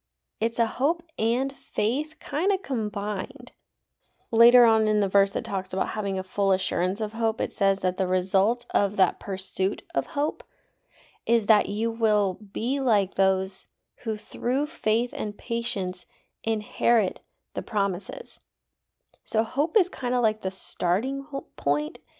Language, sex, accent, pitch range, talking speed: English, female, American, 200-240 Hz, 150 wpm